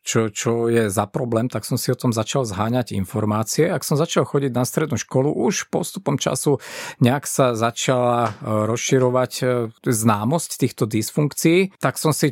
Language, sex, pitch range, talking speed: Slovak, male, 115-140 Hz, 160 wpm